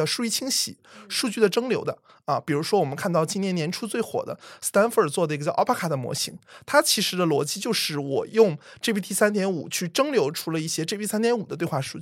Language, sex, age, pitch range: Chinese, male, 20-39, 155-215 Hz